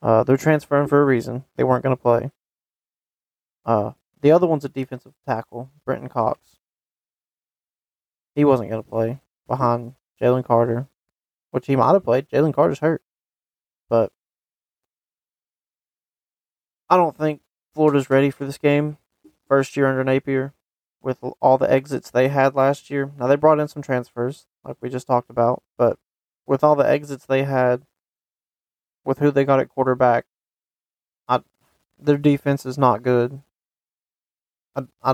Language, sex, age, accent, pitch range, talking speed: English, male, 20-39, American, 120-140 Hz, 150 wpm